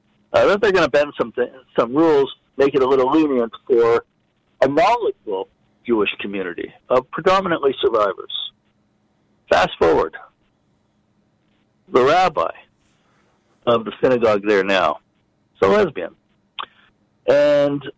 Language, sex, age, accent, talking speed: English, male, 60-79, American, 125 wpm